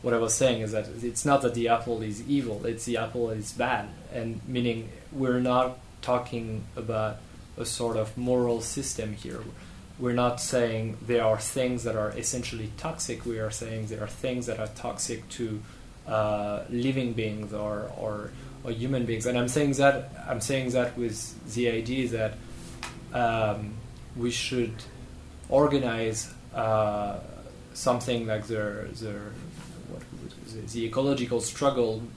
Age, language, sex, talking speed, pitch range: 20-39, English, male, 150 wpm, 110-125 Hz